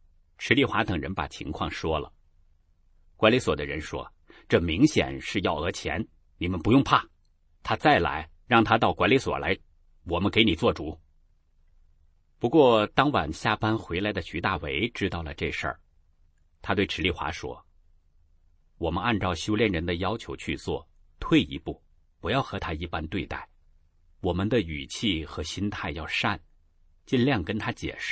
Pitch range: 75-95 Hz